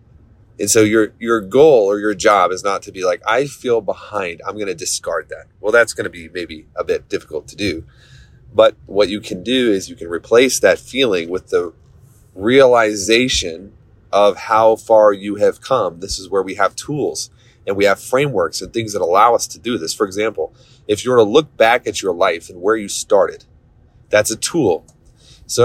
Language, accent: English, American